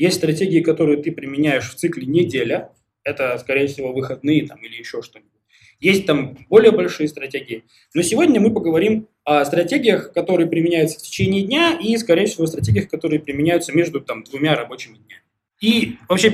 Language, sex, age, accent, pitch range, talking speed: Russian, male, 20-39, native, 135-175 Hz, 160 wpm